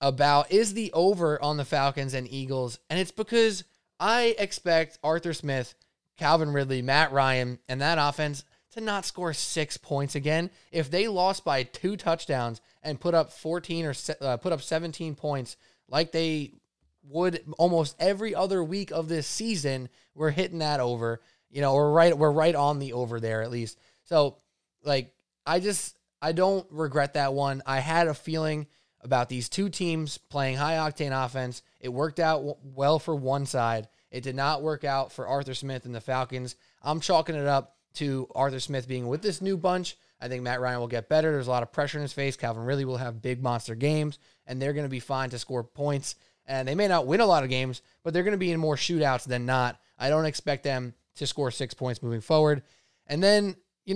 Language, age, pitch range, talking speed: English, 20-39, 130-165 Hz, 205 wpm